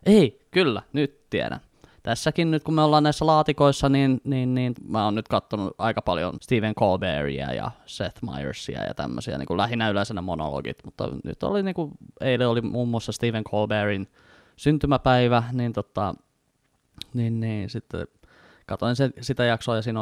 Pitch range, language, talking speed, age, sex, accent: 100-135 Hz, Finnish, 160 wpm, 20-39, male, native